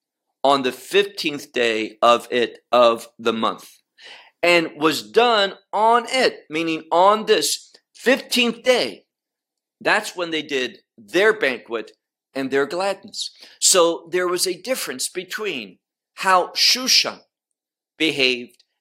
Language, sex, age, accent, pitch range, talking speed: English, male, 50-69, American, 150-240 Hz, 120 wpm